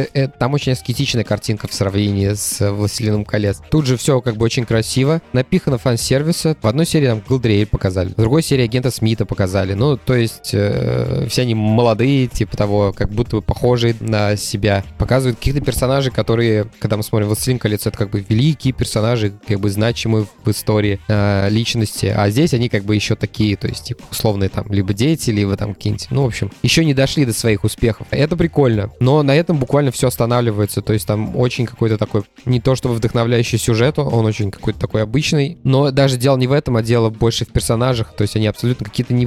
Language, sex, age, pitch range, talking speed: Russian, male, 20-39, 105-130 Hz, 200 wpm